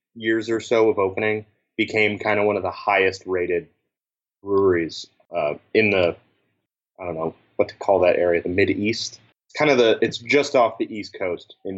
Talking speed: 195 wpm